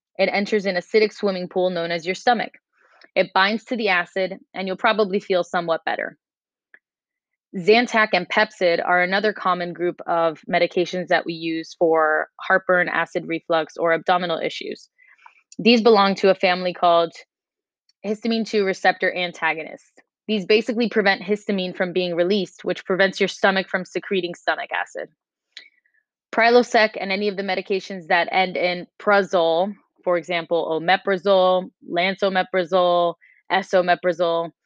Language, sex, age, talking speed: English, female, 20-39, 140 wpm